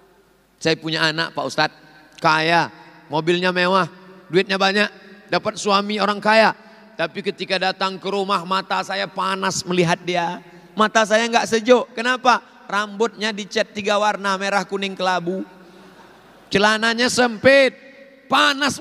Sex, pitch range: male, 155-210 Hz